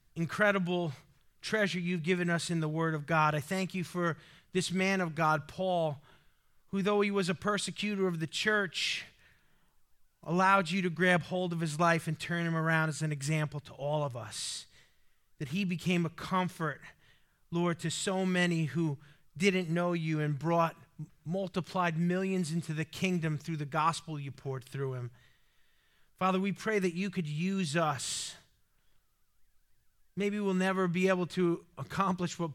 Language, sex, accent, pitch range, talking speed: English, male, American, 155-195 Hz, 165 wpm